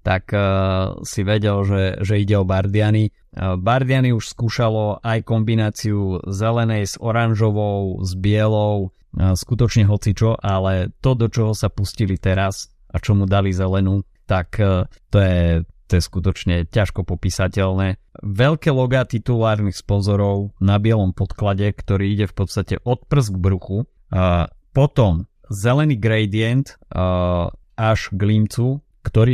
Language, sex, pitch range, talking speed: Slovak, male, 95-115 Hz, 135 wpm